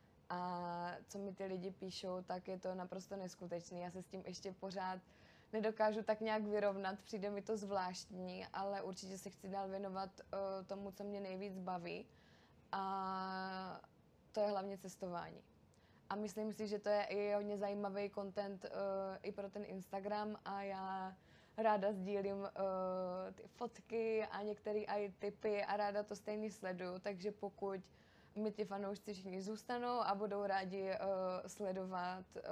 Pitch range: 185-205 Hz